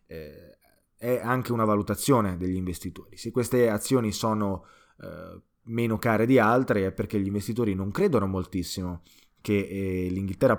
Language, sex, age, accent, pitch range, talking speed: Italian, male, 20-39, native, 95-115 Hz, 130 wpm